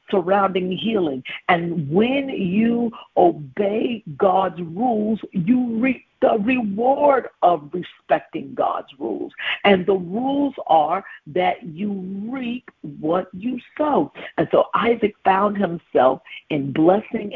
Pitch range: 190-255 Hz